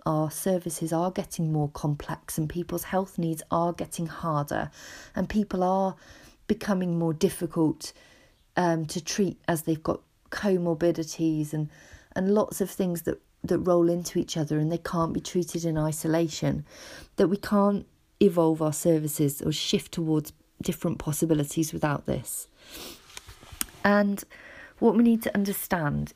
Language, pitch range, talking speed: English, 165-210 Hz, 145 wpm